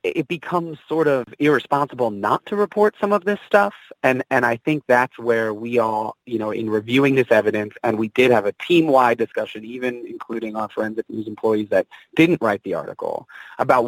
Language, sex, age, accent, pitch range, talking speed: English, male, 30-49, American, 110-135 Hz, 195 wpm